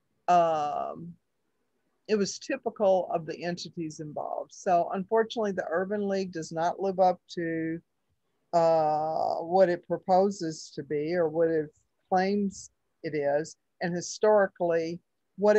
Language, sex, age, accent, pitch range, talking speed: English, female, 50-69, American, 155-195 Hz, 125 wpm